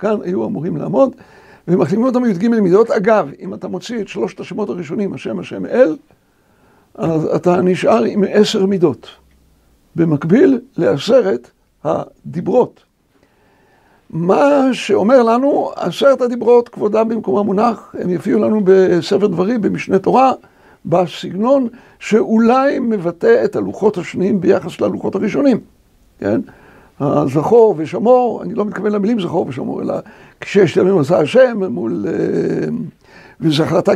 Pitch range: 185-245 Hz